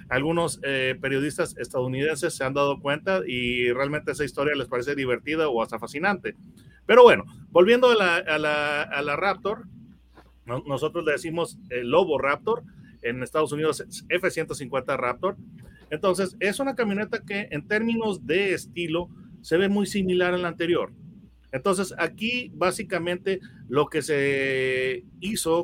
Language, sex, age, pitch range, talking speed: Spanish, male, 40-59, 145-190 Hz, 145 wpm